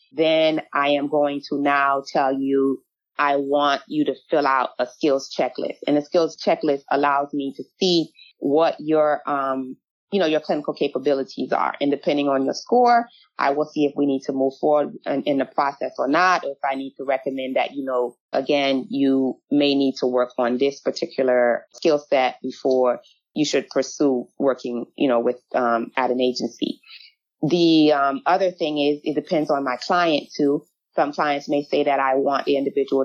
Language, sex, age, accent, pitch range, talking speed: English, female, 30-49, American, 135-155 Hz, 190 wpm